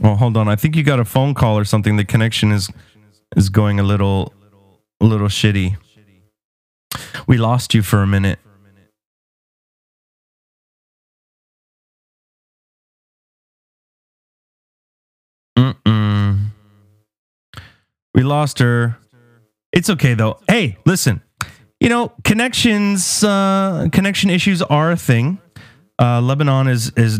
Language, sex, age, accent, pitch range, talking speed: English, male, 30-49, American, 110-165 Hz, 110 wpm